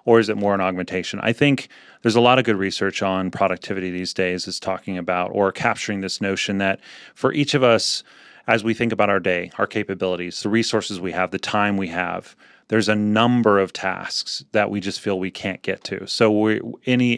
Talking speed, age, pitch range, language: 215 wpm, 30-49, 95-110 Hz, English